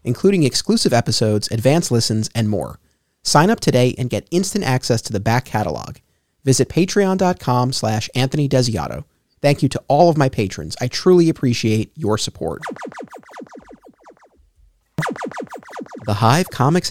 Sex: male